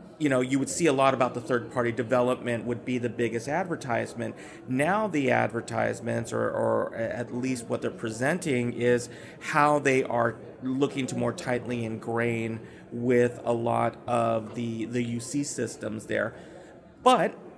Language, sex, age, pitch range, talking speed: English, male, 30-49, 115-135 Hz, 150 wpm